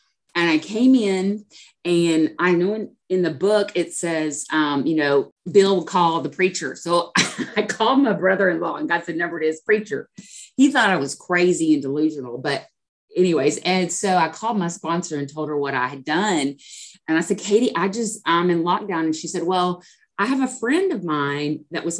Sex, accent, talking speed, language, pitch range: female, American, 205 wpm, English, 160-210 Hz